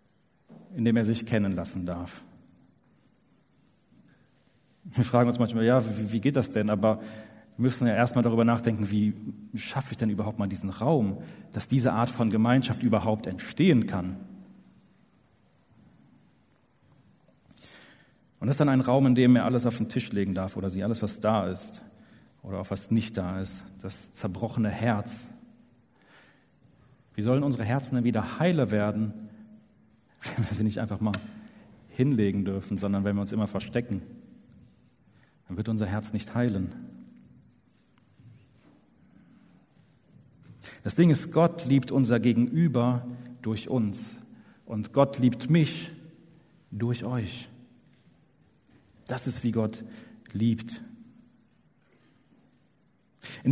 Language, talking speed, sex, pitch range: German, 130 wpm, male, 105-135 Hz